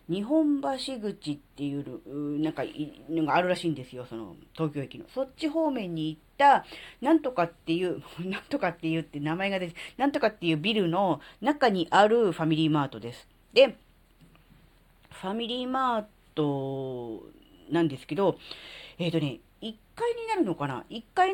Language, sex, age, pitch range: Japanese, female, 40-59, 155-240 Hz